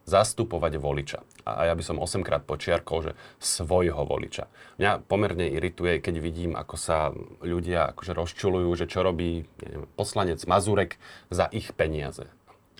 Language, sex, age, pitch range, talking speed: Slovak, male, 30-49, 85-115 Hz, 140 wpm